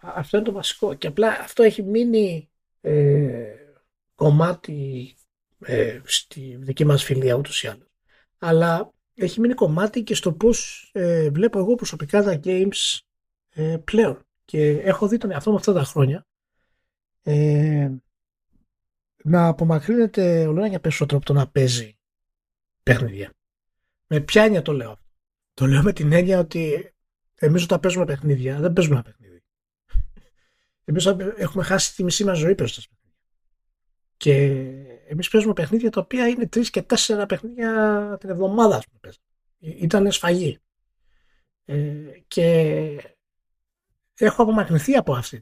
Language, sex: Greek, male